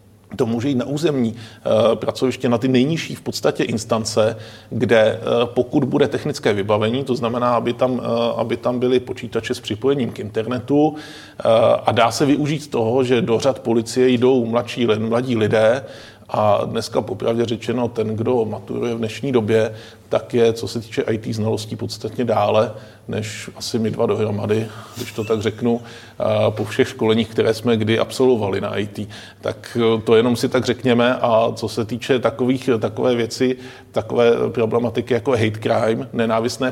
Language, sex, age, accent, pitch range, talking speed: Czech, male, 40-59, native, 110-125 Hz, 160 wpm